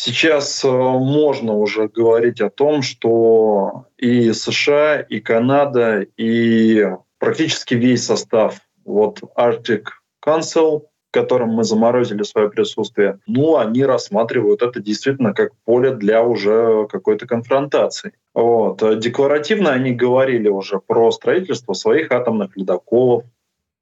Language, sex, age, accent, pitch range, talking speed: Russian, male, 20-39, native, 115-135 Hz, 115 wpm